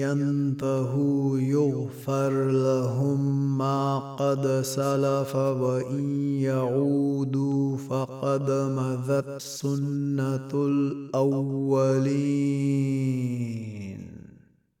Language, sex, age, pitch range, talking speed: Arabic, male, 30-49, 130-135 Hz, 50 wpm